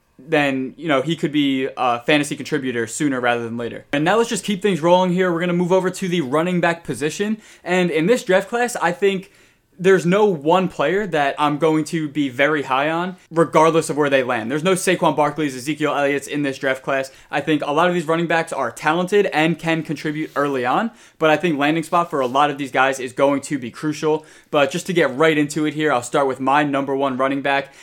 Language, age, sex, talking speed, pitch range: English, 20-39, male, 240 wpm, 135-165 Hz